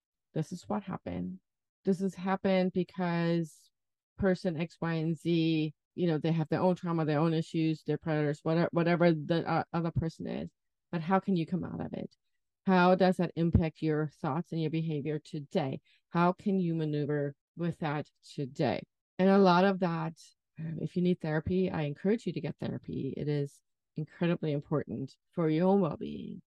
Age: 30-49